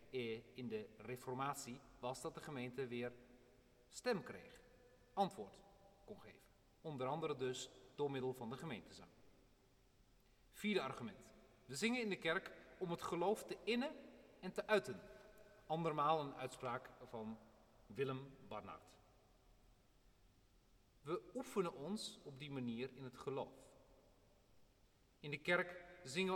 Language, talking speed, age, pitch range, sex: Dutch, 125 wpm, 40-59, 125-180 Hz, male